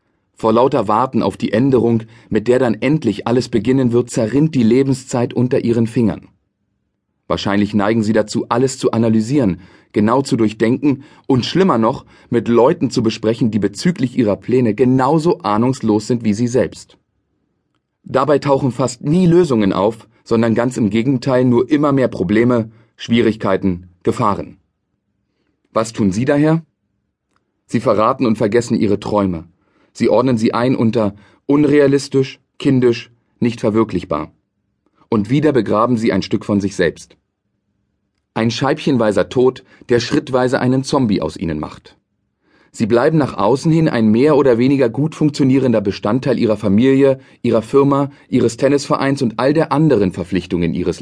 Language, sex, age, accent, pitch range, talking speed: German, male, 40-59, German, 110-135 Hz, 145 wpm